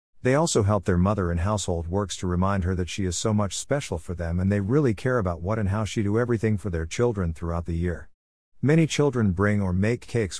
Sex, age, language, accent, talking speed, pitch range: male, 50-69, English, American, 240 wpm, 85-110 Hz